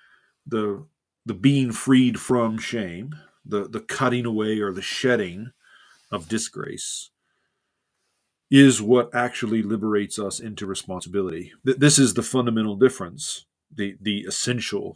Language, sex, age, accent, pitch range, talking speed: English, male, 40-59, American, 100-125 Hz, 120 wpm